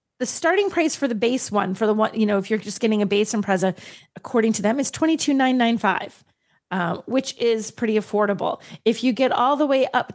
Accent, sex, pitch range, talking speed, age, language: American, female, 210-270 Hz, 235 wpm, 30-49, English